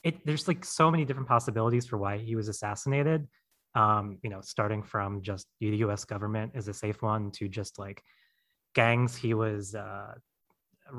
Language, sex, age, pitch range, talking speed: English, male, 20-39, 110-135 Hz, 175 wpm